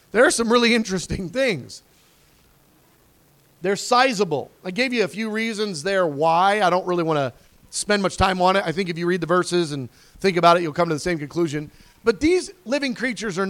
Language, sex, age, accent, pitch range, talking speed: English, male, 40-59, American, 165-225 Hz, 215 wpm